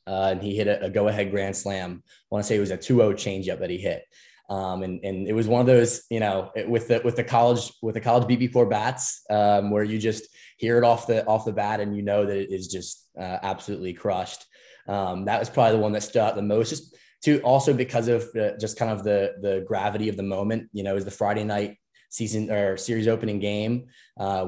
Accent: American